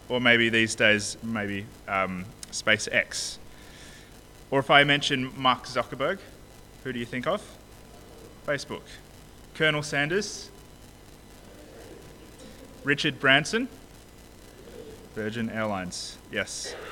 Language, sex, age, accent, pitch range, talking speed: English, male, 20-39, Australian, 110-150 Hz, 90 wpm